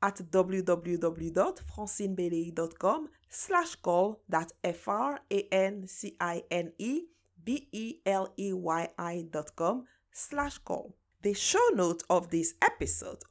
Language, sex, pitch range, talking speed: English, female, 190-305 Hz, 45 wpm